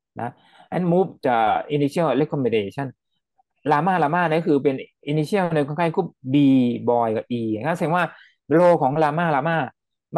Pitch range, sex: 130-170 Hz, male